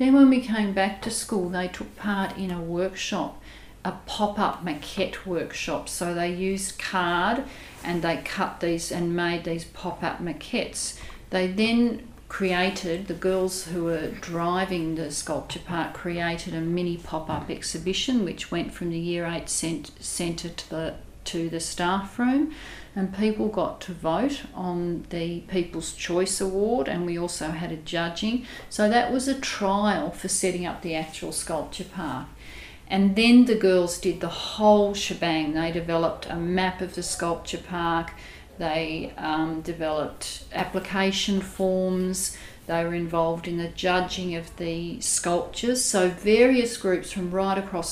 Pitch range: 170-195 Hz